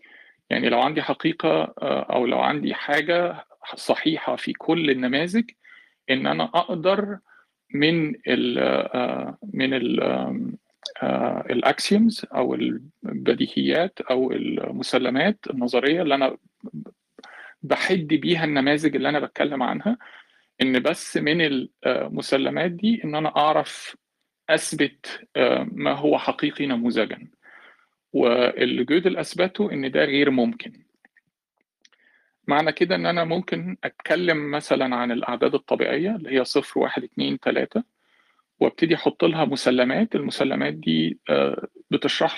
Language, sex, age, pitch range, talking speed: Arabic, male, 50-69, 145-215 Hz, 100 wpm